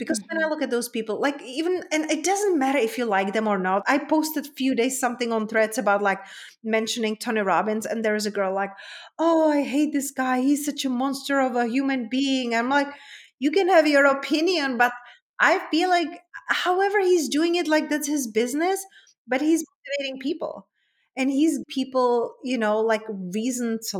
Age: 30-49